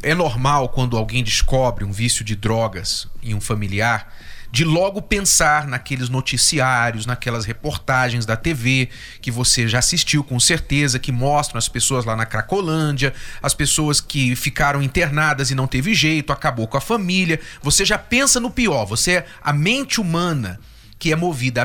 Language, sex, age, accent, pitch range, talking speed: Portuguese, male, 40-59, Brazilian, 125-190 Hz, 165 wpm